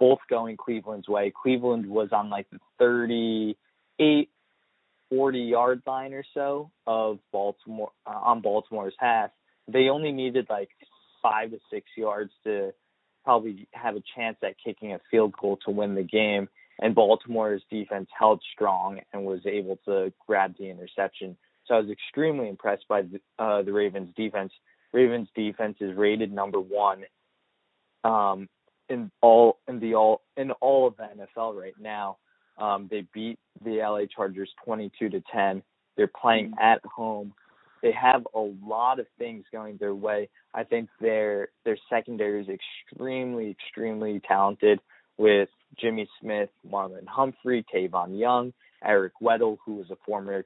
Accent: American